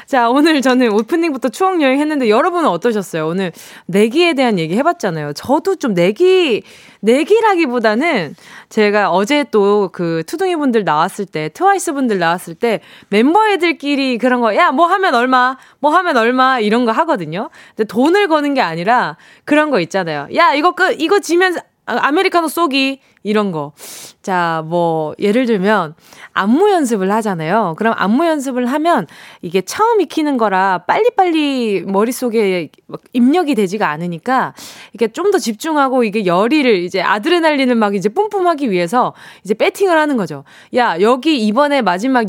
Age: 20-39